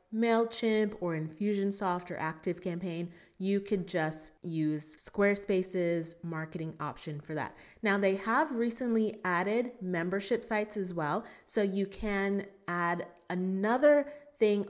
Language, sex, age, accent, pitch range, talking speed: English, female, 30-49, American, 170-215 Hz, 120 wpm